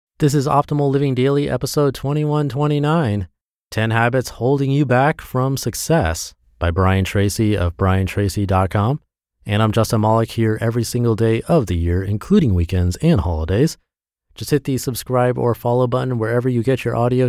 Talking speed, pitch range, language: 160 wpm, 90-125 Hz, English